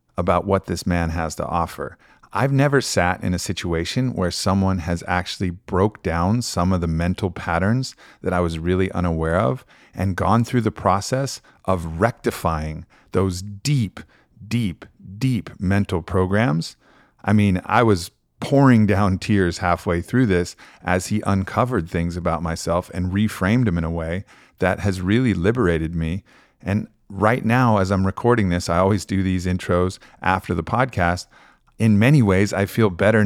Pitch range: 85-105 Hz